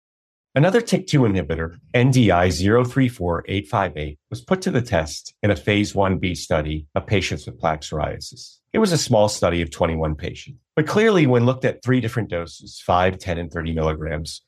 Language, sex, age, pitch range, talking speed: English, male, 40-59, 80-115 Hz, 170 wpm